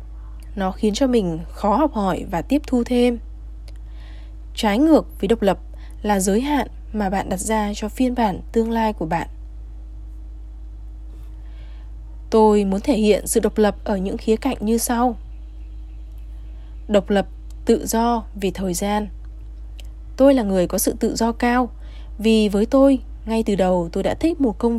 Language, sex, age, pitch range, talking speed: Vietnamese, female, 20-39, 180-230 Hz, 165 wpm